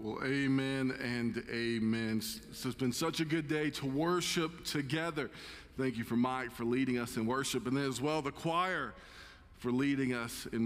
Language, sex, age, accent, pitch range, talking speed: English, male, 40-59, American, 130-170 Hz, 185 wpm